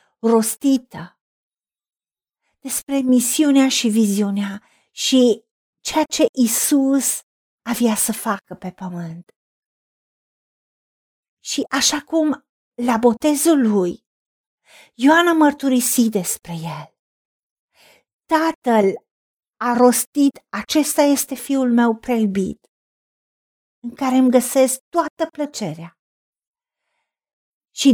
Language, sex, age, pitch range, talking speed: Romanian, female, 50-69, 200-275 Hz, 85 wpm